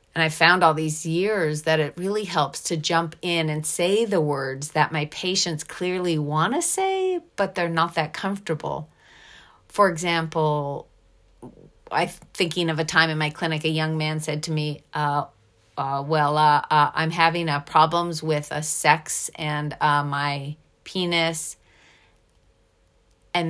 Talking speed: 160 wpm